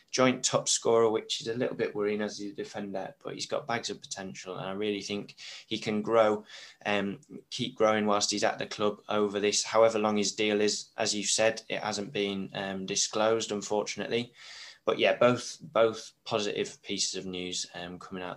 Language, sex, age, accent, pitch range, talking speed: English, male, 20-39, British, 100-115 Hz, 200 wpm